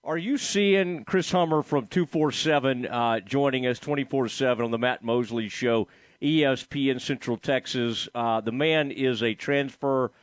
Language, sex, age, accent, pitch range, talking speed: English, male, 40-59, American, 130-165 Hz, 145 wpm